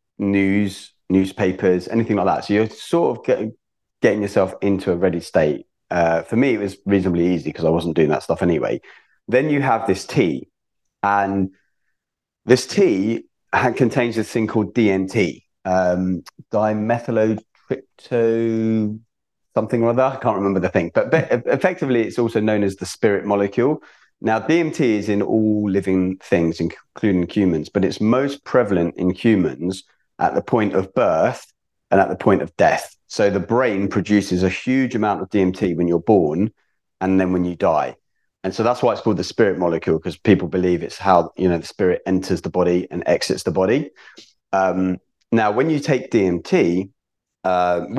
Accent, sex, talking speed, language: British, male, 175 wpm, English